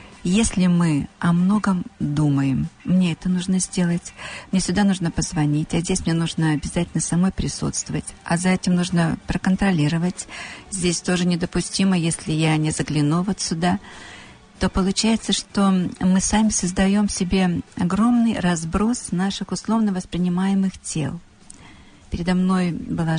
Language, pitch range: Russian, 160-195 Hz